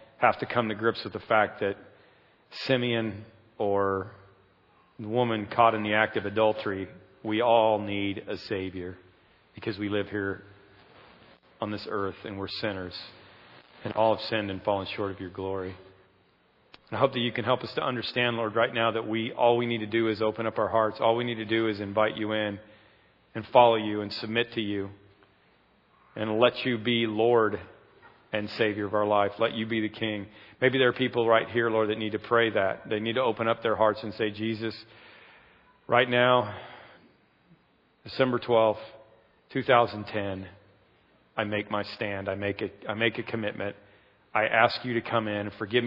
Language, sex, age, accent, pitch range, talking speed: English, male, 40-59, American, 100-115 Hz, 190 wpm